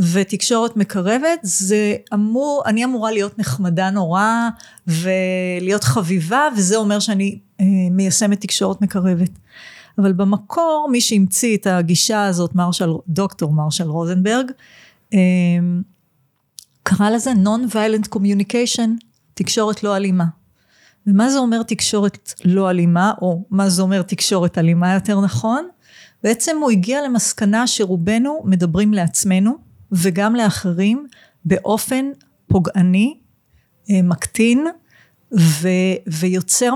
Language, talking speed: Hebrew, 105 wpm